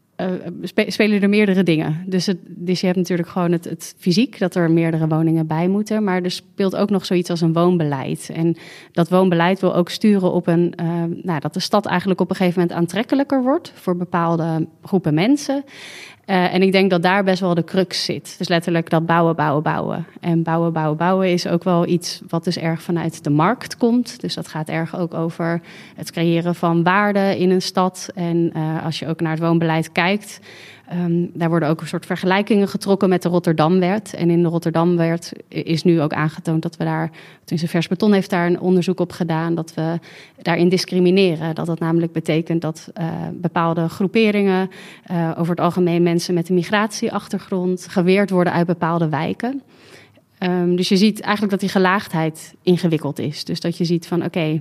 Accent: Dutch